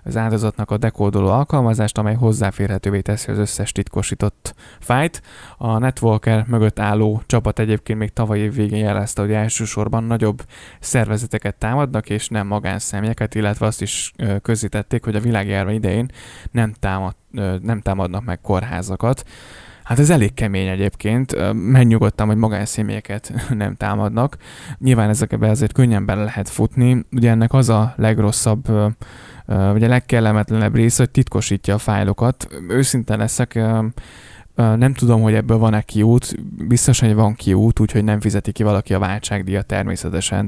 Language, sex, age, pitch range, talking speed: Hungarian, male, 10-29, 100-115 Hz, 140 wpm